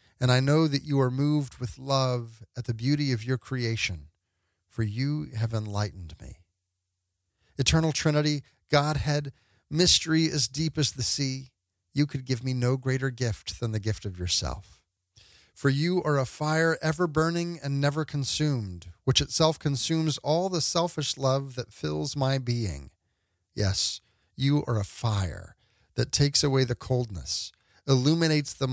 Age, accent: 40-59, American